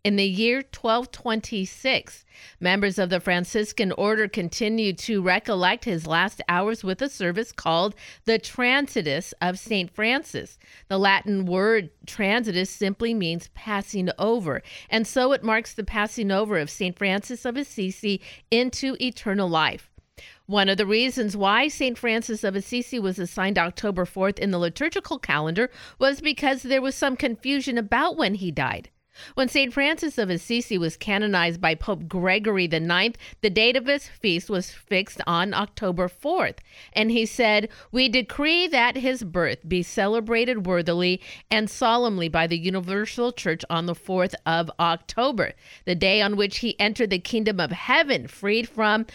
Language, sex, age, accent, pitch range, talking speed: English, female, 50-69, American, 185-235 Hz, 160 wpm